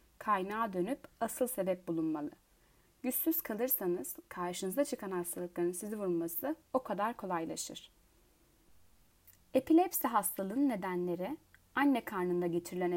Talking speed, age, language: 95 wpm, 30-49, Turkish